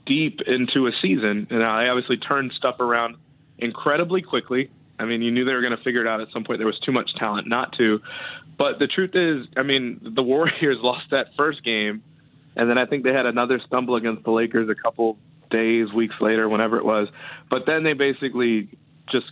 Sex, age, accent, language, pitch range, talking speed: male, 20-39, American, English, 110-135 Hz, 215 wpm